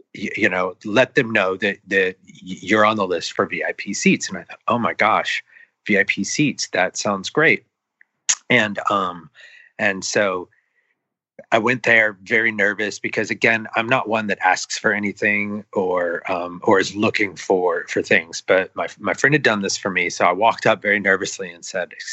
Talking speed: 185 wpm